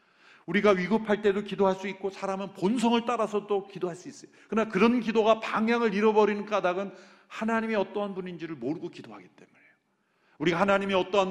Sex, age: male, 40-59